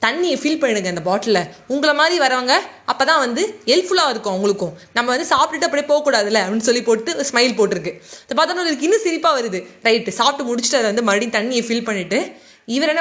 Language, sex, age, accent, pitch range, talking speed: Tamil, female, 20-39, native, 205-285 Hz, 190 wpm